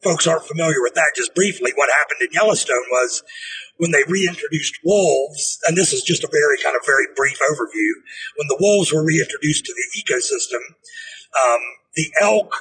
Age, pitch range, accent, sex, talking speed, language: 50-69, 155-215 Hz, American, male, 180 wpm, English